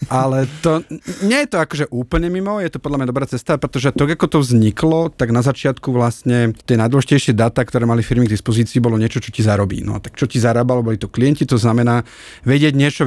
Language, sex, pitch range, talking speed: Slovak, male, 115-140 Hz, 225 wpm